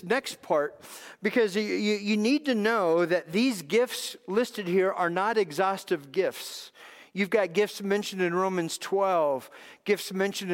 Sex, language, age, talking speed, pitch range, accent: male, English, 50-69, 150 wpm, 185-235 Hz, American